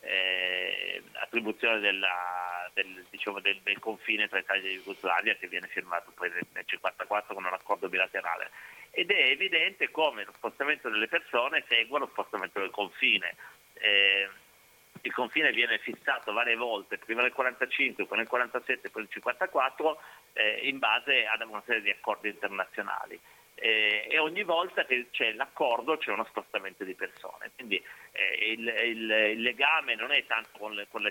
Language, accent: Italian, native